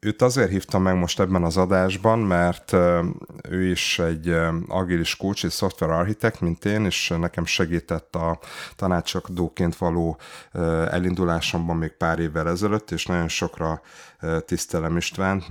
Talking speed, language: 135 wpm, Hungarian